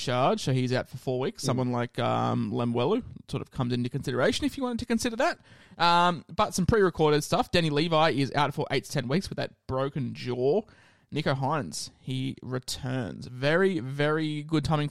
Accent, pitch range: Australian, 130-170 Hz